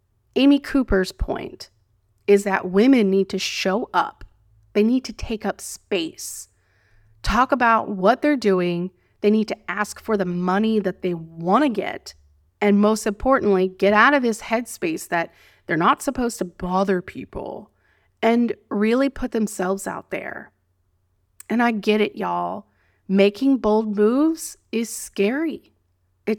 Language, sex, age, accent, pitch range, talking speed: English, female, 30-49, American, 170-220 Hz, 150 wpm